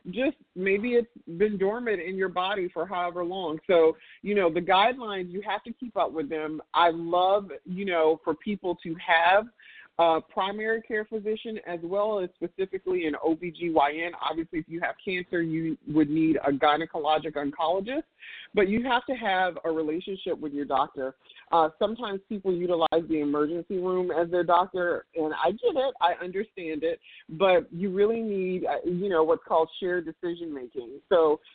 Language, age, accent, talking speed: English, 40-59, American, 170 wpm